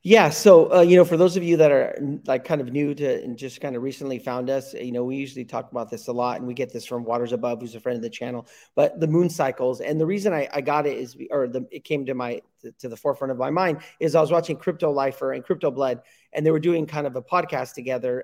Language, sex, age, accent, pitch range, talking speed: English, male, 40-59, American, 130-165 Hz, 285 wpm